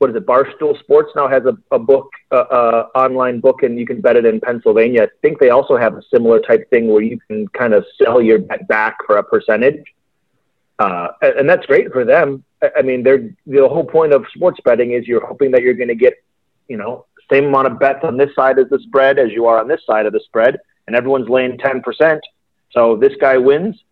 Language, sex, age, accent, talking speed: English, male, 30-49, American, 245 wpm